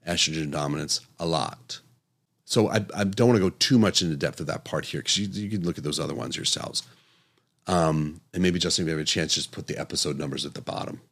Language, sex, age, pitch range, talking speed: English, male, 40-59, 80-115 Hz, 250 wpm